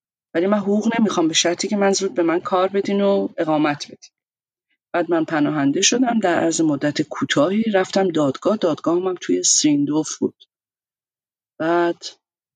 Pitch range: 170-275 Hz